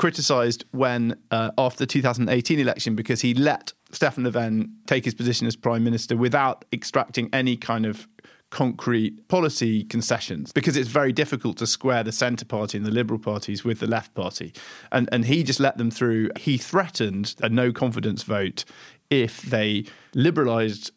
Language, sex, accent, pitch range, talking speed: English, male, British, 110-135 Hz, 170 wpm